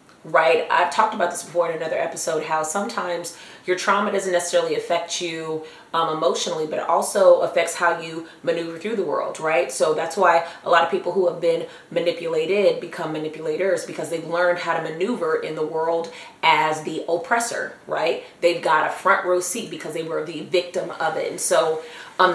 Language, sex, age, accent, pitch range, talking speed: English, female, 30-49, American, 170-220 Hz, 195 wpm